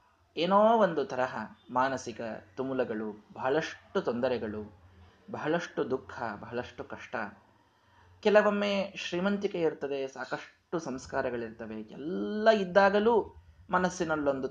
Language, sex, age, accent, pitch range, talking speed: Kannada, male, 20-39, native, 110-145 Hz, 80 wpm